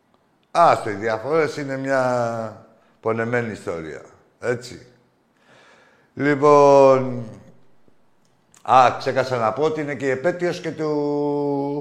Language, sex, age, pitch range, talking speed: Greek, male, 60-79, 130-160 Hz, 95 wpm